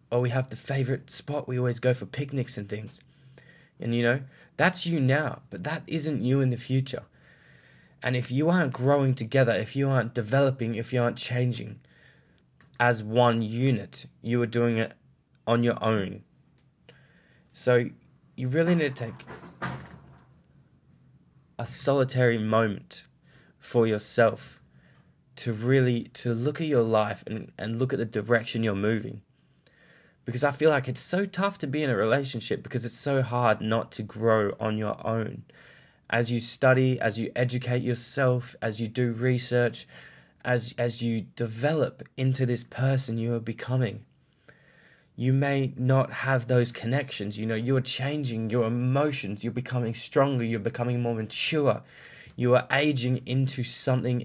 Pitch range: 115-135 Hz